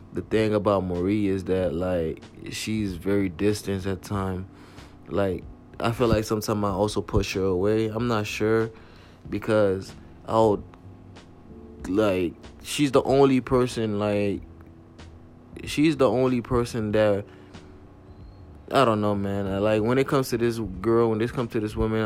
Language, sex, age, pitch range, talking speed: English, male, 20-39, 90-110 Hz, 150 wpm